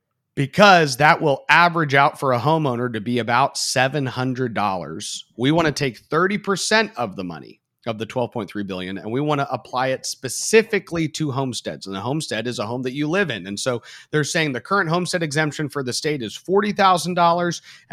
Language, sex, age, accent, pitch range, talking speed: English, male, 40-59, American, 115-155 Hz, 185 wpm